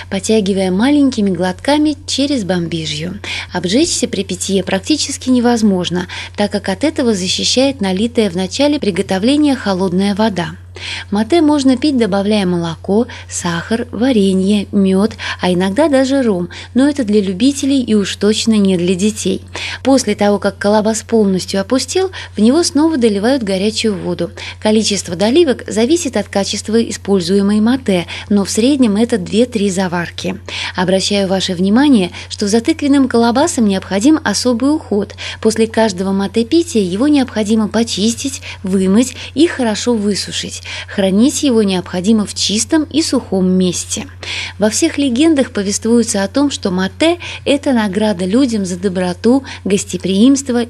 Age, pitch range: 20-39, 190-255 Hz